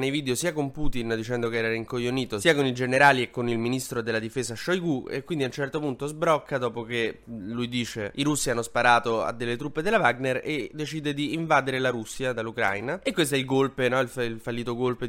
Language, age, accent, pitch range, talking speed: Italian, 20-39, native, 115-140 Hz, 230 wpm